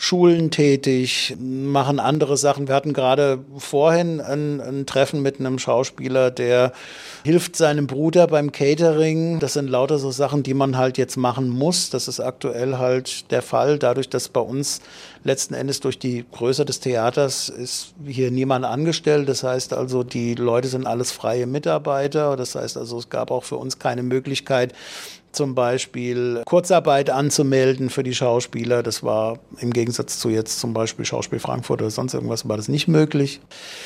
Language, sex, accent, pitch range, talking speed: German, male, German, 125-145 Hz, 170 wpm